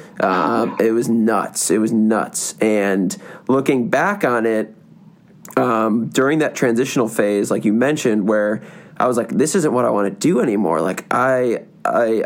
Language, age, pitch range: English, 20-39, 115-145 Hz